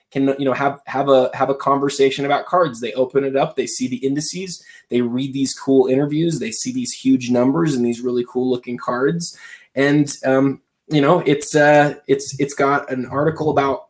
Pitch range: 130-150 Hz